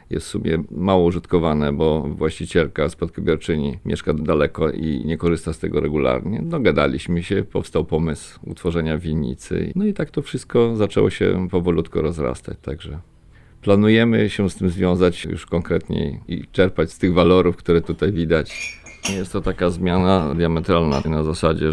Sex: male